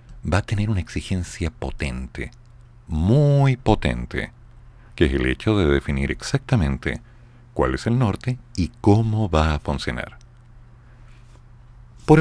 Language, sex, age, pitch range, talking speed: Spanish, male, 50-69, 80-120 Hz, 125 wpm